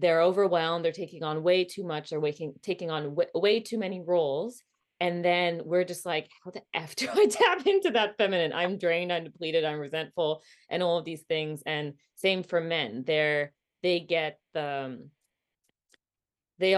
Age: 20-39